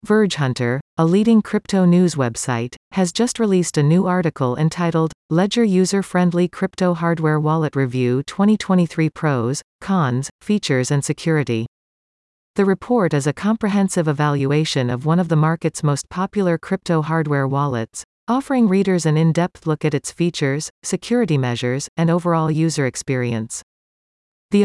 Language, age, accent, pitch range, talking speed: English, 40-59, American, 140-185 Hz, 140 wpm